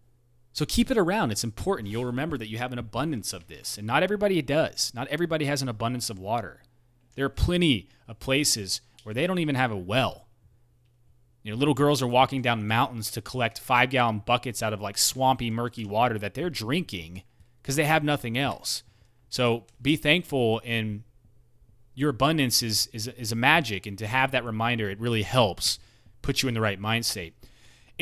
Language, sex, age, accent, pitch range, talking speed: English, male, 30-49, American, 110-140 Hz, 190 wpm